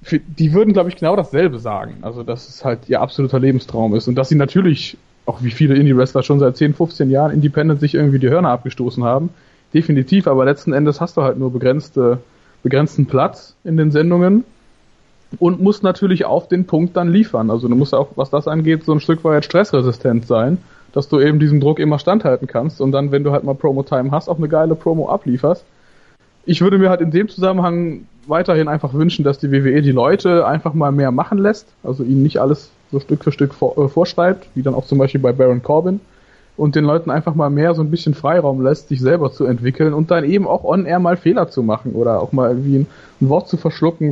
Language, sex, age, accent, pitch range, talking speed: German, male, 20-39, German, 135-170 Hz, 220 wpm